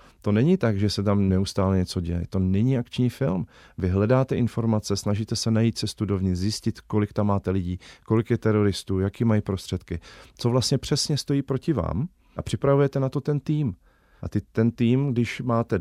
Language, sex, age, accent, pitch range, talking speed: Czech, male, 40-59, native, 95-120 Hz, 190 wpm